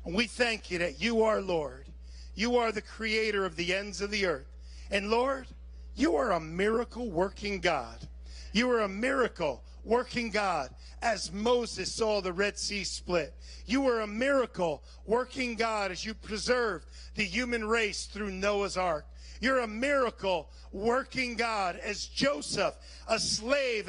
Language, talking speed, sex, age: English, 160 wpm, male, 50-69